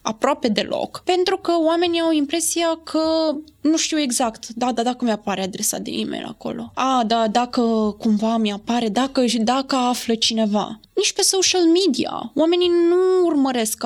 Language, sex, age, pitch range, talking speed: Romanian, female, 20-39, 245-320 Hz, 150 wpm